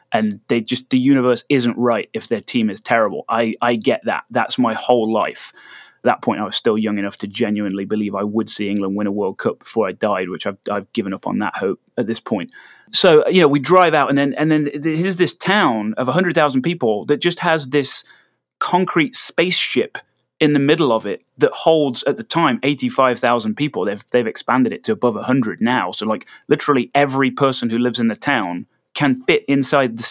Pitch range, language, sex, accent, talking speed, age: 120-150 Hz, English, male, British, 225 wpm, 30-49